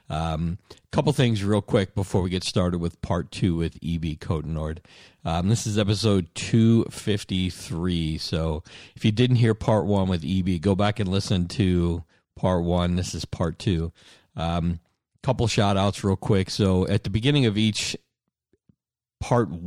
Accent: American